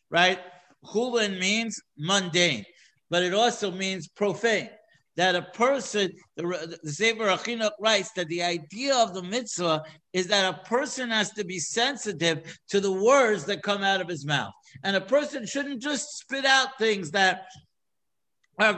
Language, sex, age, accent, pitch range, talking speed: English, male, 60-79, American, 160-215 Hz, 160 wpm